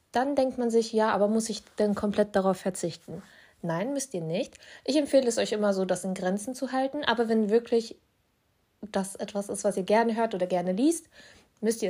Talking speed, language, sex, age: 210 wpm, German, female, 20-39